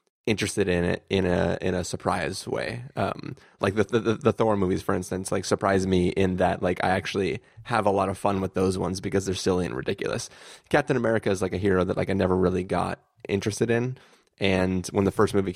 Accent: American